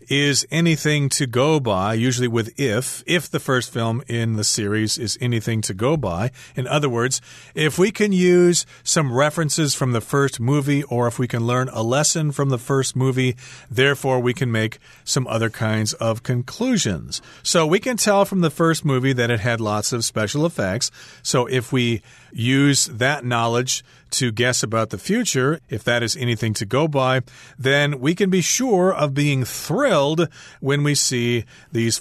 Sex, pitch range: male, 115-150 Hz